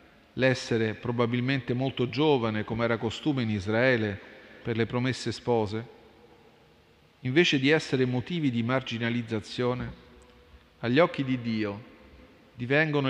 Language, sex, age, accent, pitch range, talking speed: Italian, male, 40-59, native, 105-130 Hz, 110 wpm